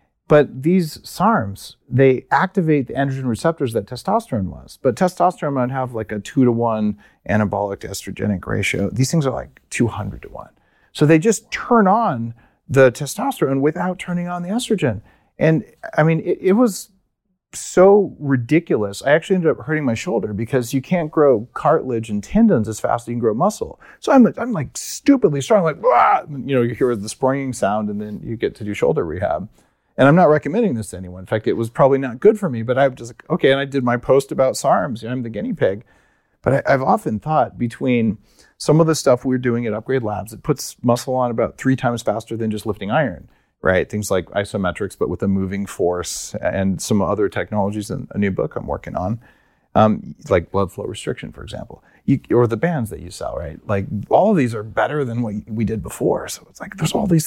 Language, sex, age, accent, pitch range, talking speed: English, male, 40-59, American, 110-160 Hz, 210 wpm